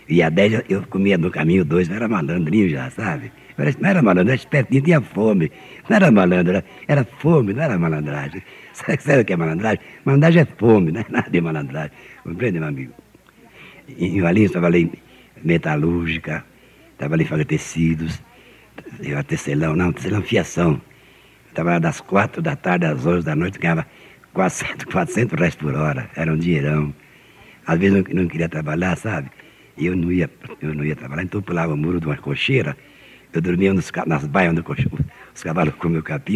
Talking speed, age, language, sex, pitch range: 185 wpm, 60-79, Portuguese, male, 80-105 Hz